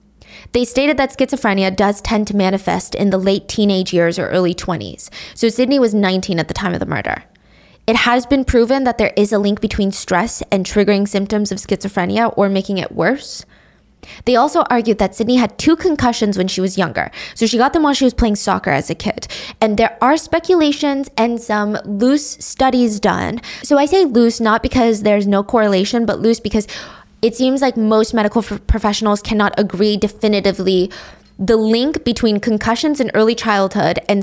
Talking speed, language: 190 wpm, English